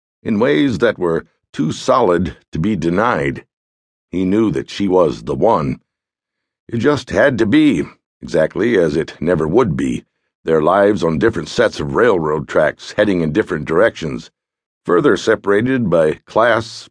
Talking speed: 155 wpm